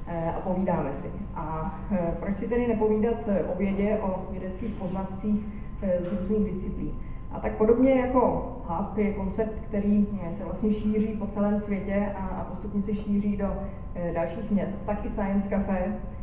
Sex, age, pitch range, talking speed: female, 20-39, 185-210 Hz, 150 wpm